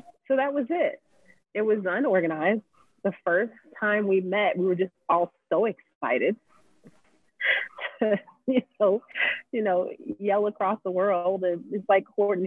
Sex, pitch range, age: female, 185-270 Hz, 30-49